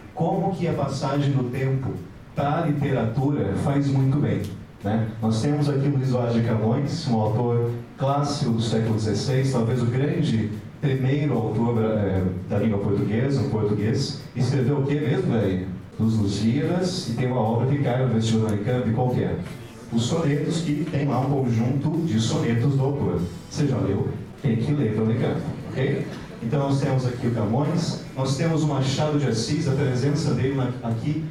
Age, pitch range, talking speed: 40-59, 115-145 Hz, 175 wpm